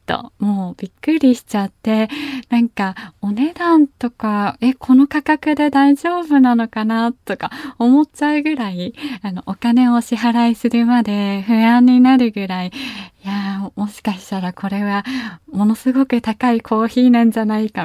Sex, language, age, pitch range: female, Japanese, 20-39, 195-270 Hz